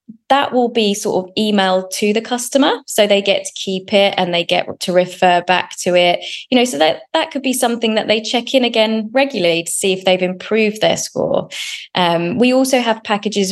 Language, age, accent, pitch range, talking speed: English, 20-39, British, 175-215 Hz, 215 wpm